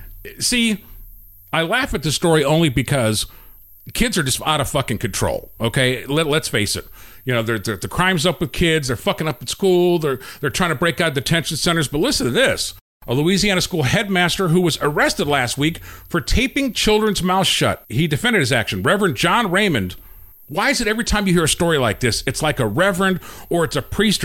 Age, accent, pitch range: 50-69, American, 135-195 Hz